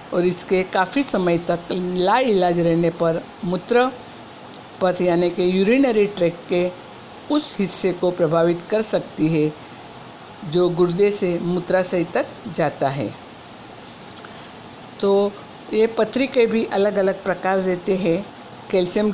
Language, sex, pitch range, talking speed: Hindi, female, 175-205 Hz, 125 wpm